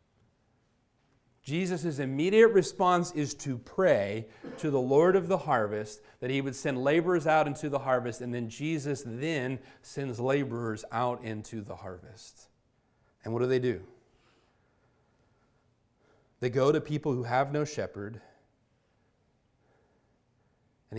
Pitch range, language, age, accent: 115-140 Hz, English, 40-59, American